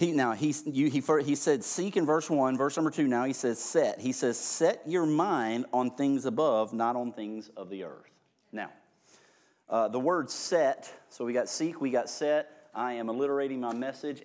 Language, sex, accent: English, male, American